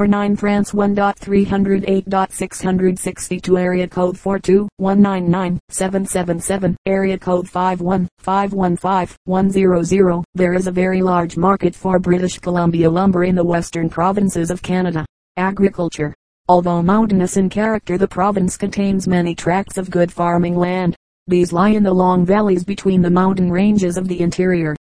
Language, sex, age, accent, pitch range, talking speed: English, female, 40-59, American, 175-195 Hz, 125 wpm